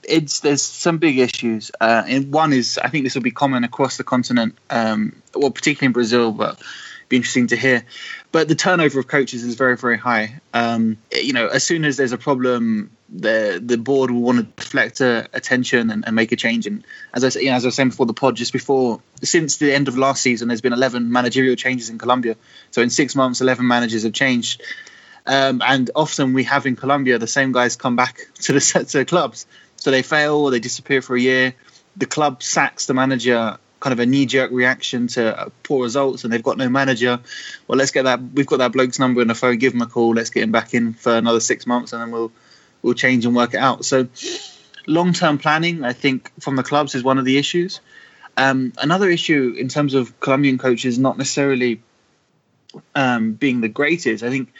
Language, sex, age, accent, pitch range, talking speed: English, male, 20-39, British, 120-140 Hz, 225 wpm